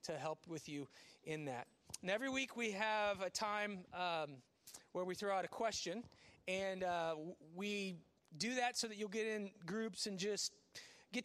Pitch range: 155-200 Hz